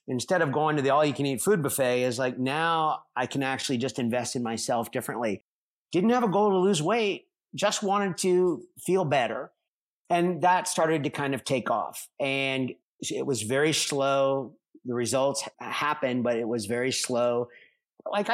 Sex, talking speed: male, 185 wpm